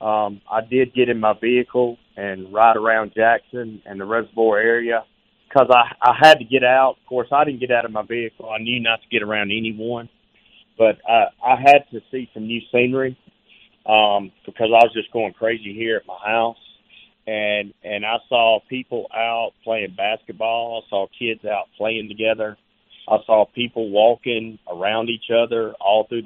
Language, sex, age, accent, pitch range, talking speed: English, male, 30-49, American, 105-125 Hz, 185 wpm